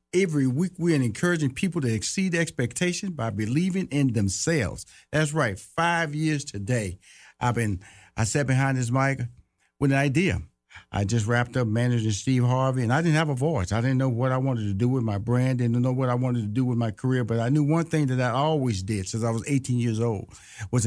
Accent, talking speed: American, 220 wpm